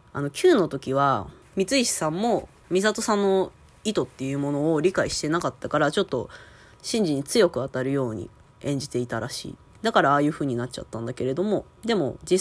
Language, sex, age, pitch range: Japanese, female, 20-39, 125-175 Hz